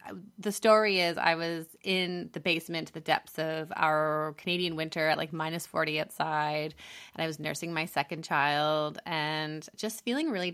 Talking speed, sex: 170 wpm, female